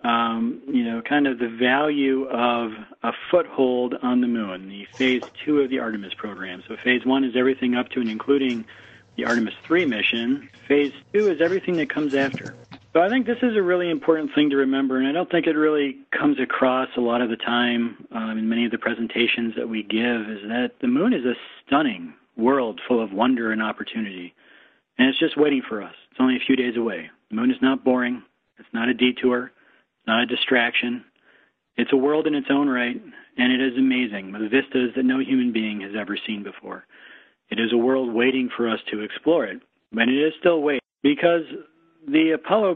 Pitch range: 120-155 Hz